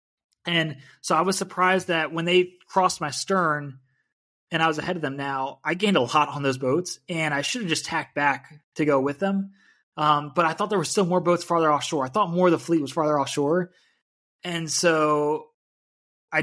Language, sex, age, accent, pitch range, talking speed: English, male, 20-39, American, 150-185 Hz, 215 wpm